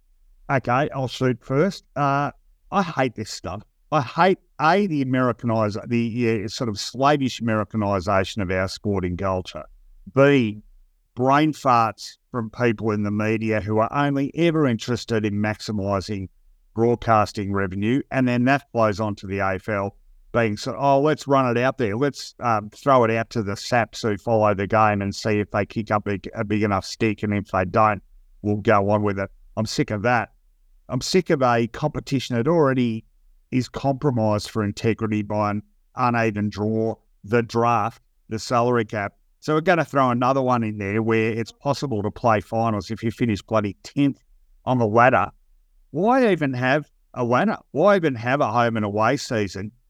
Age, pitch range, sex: 50-69, 105-135 Hz, male